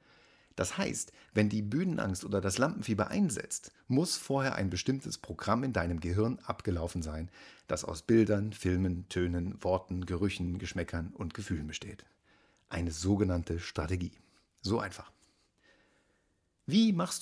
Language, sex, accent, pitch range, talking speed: German, male, German, 90-115 Hz, 130 wpm